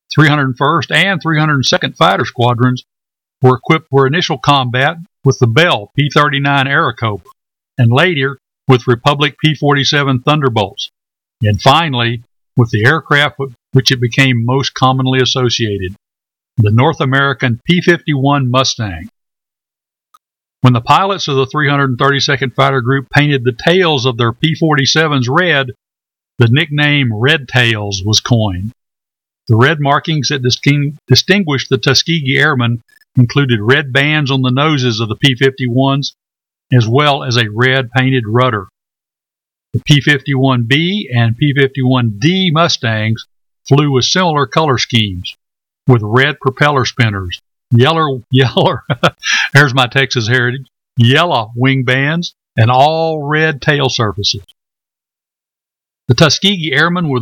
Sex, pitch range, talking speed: male, 125-150 Hz, 130 wpm